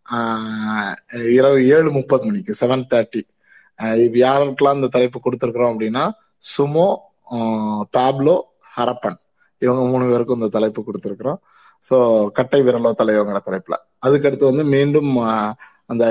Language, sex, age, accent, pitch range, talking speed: Tamil, male, 20-39, native, 110-135 Hz, 120 wpm